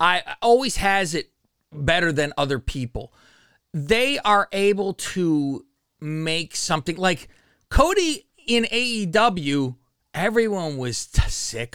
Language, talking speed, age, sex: English, 105 wpm, 30-49, male